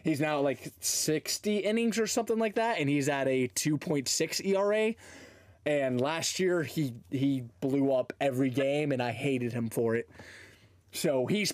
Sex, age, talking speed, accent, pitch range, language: male, 20-39, 165 wpm, American, 120-170 Hz, English